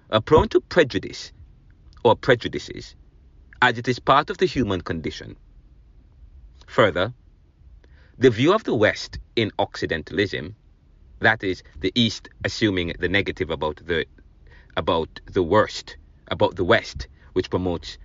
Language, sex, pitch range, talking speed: English, male, 70-110 Hz, 130 wpm